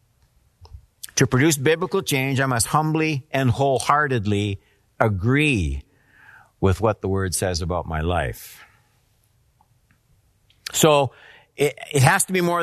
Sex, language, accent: male, English, American